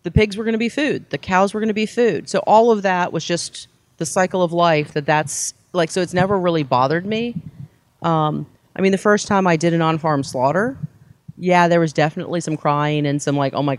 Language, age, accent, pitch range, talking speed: English, 40-59, American, 135-165 Hz, 240 wpm